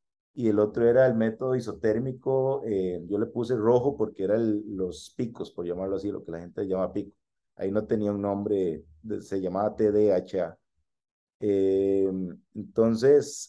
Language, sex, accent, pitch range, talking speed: Spanish, male, Venezuelan, 95-120 Hz, 155 wpm